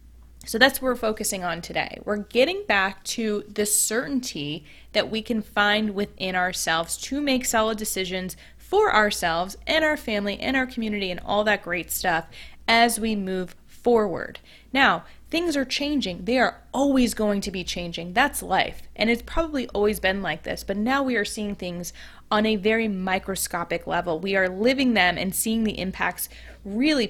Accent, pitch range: American, 185-245 Hz